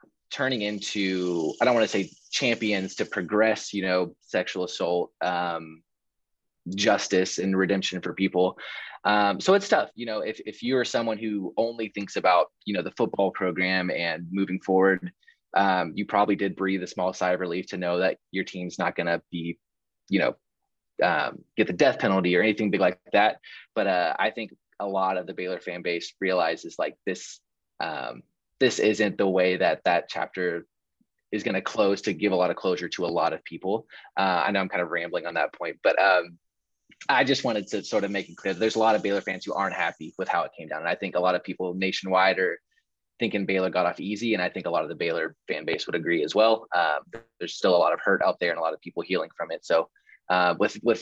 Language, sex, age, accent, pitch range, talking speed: English, male, 20-39, American, 90-105 Hz, 230 wpm